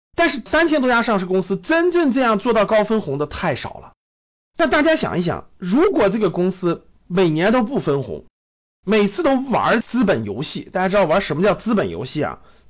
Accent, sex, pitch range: native, male, 190-280 Hz